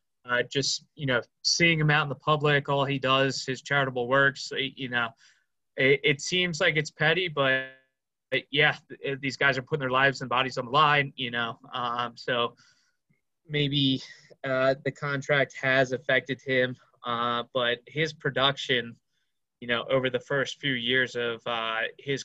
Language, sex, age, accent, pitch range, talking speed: English, male, 20-39, American, 125-145 Hz, 170 wpm